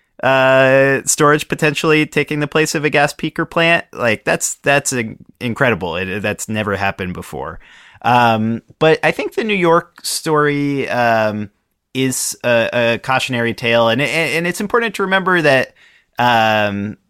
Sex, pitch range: male, 100-140 Hz